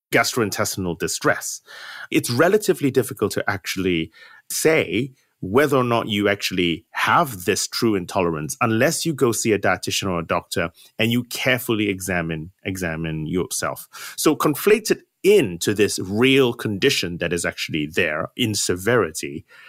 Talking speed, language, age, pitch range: 135 wpm, English, 30-49, 100-145 Hz